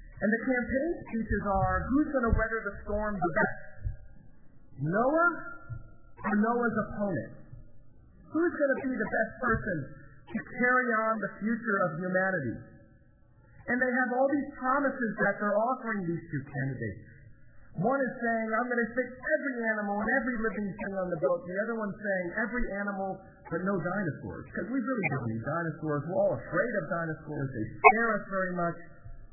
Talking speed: 170 wpm